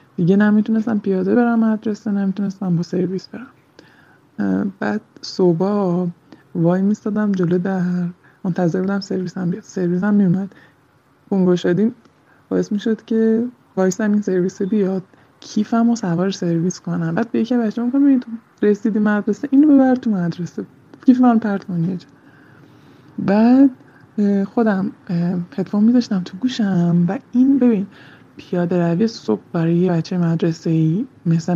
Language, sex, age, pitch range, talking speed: Persian, male, 20-39, 170-225 Hz, 130 wpm